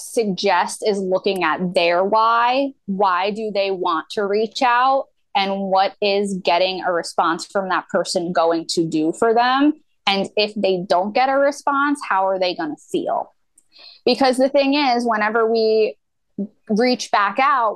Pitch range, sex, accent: 205-270 Hz, female, American